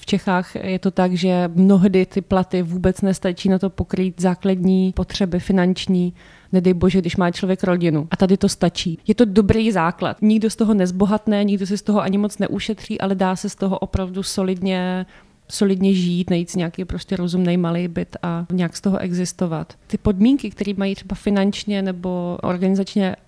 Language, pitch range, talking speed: Czech, 180-200 Hz, 180 wpm